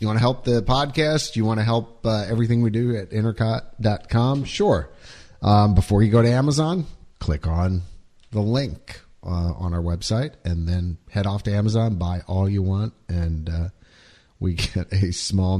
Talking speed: 180 wpm